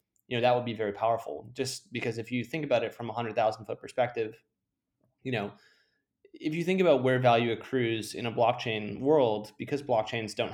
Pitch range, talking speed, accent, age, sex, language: 110-130 Hz, 205 wpm, American, 20-39, male, English